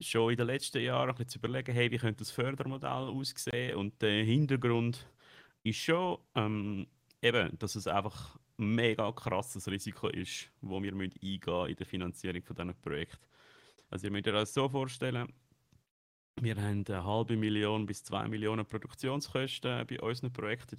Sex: male